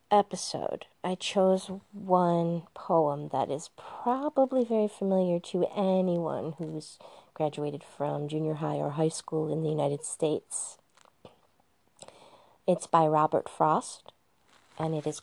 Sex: female